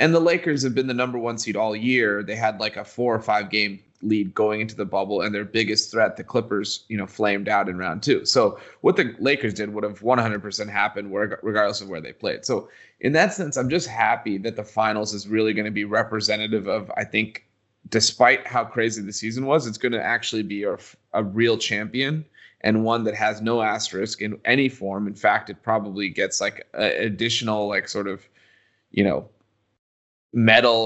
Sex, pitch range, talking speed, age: male, 105-115 Hz, 210 wpm, 30-49